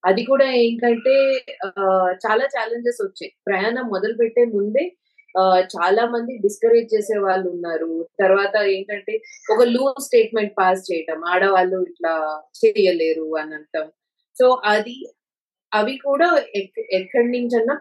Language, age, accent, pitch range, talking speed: Telugu, 30-49, native, 185-235 Hz, 120 wpm